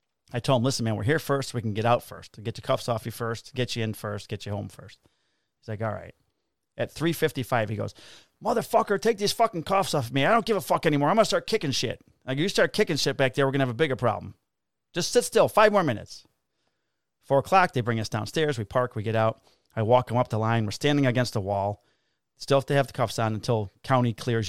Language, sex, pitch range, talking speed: English, male, 110-150 Hz, 260 wpm